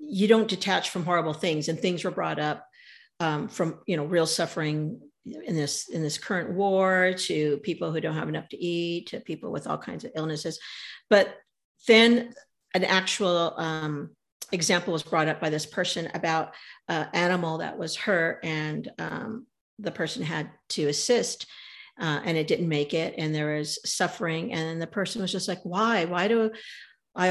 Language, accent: English, American